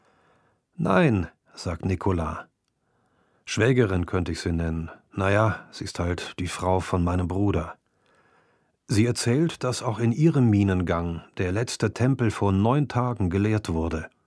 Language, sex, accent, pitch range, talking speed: German, male, German, 95-125 Hz, 140 wpm